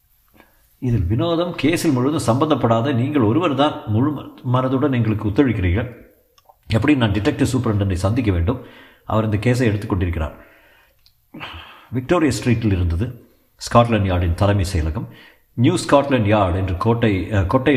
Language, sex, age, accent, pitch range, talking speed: Tamil, male, 50-69, native, 95-120 Hz, 120 wpm